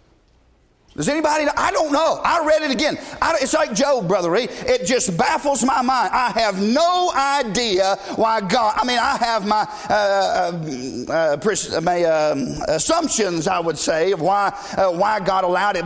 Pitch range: 215-305 Hz